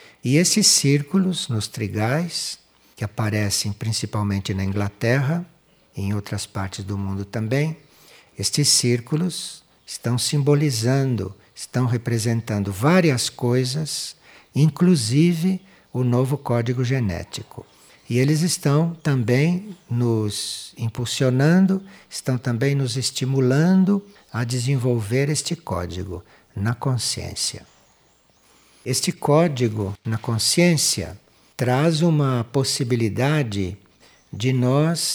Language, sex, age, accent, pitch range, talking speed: Portuguese, male, 60-79, Brazilian, 110-145 Hz, 95 wpm